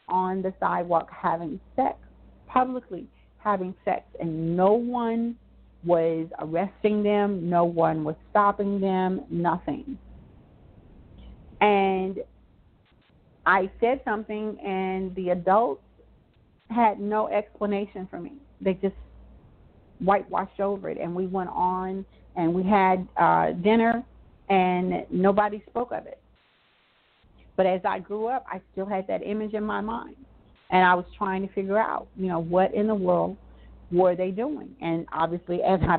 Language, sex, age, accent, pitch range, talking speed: English, female, 40-59, American, 175-210 Hz, 140 wpm